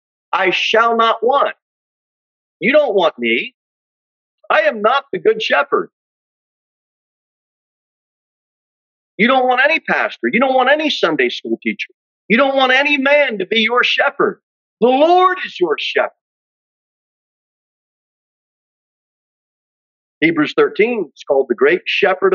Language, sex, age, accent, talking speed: English, male, 40-59, American, 125 wpm